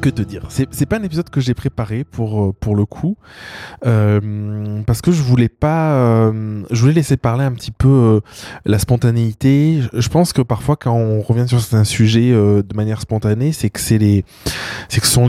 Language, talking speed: French, 210 wpm